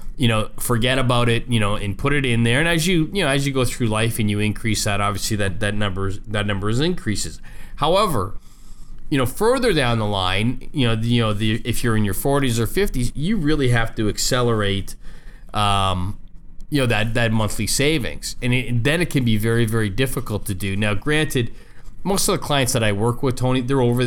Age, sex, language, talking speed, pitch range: 20-39, male, English, 225 wpm, 105-130 Hz